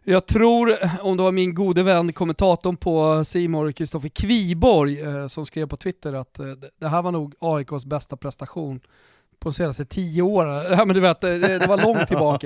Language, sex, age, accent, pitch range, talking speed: Swedish, male, 30-49, native, 160-195 Hz, 170 wpm